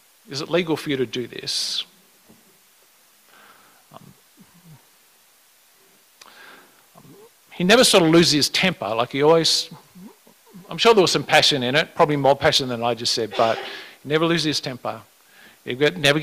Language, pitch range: English, 125-155 Hz